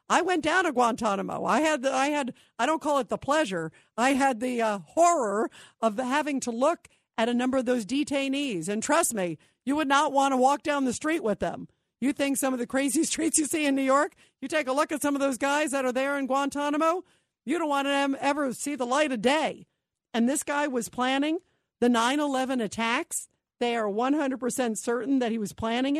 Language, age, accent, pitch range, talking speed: English, 50-69, American, 235-290 Hz, 220 wpm